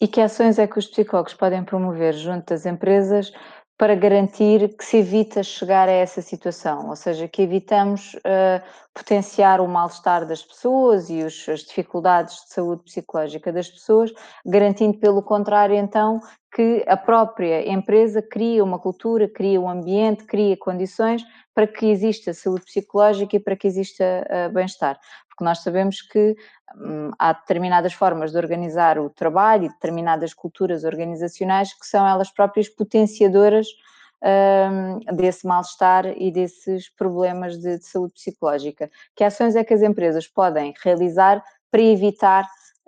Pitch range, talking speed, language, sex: 180-210 Hz, 150 wpm, Portuguese, female